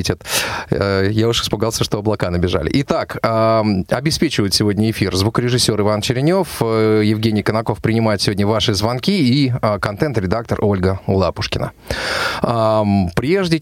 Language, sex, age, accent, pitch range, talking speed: Russian, male, 30-49, native, 105-125 Hz, 105 wpm